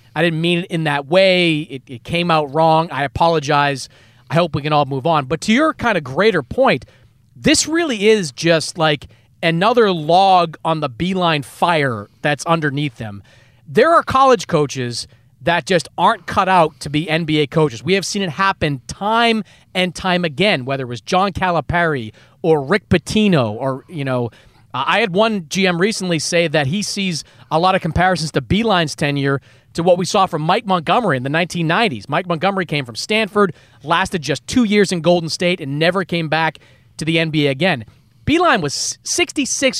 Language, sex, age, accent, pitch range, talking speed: English, male, 30-49, American, 145-195 Hz, 185 wpm